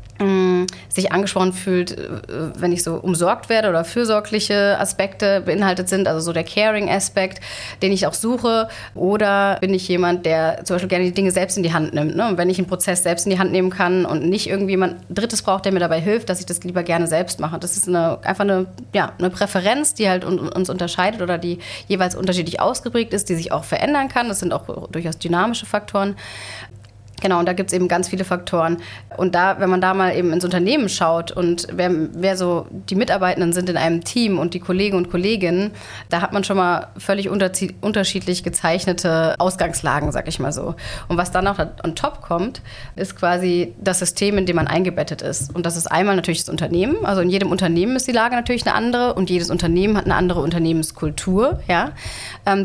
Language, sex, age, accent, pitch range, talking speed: German, female, 30-49, German, 170-195 Hz, 210 wpm